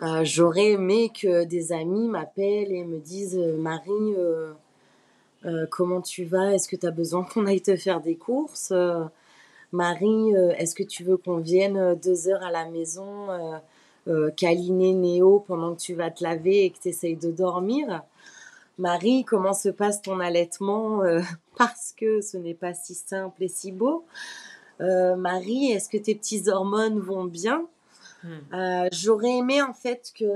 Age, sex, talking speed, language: 30-49, female, 175 wpm, French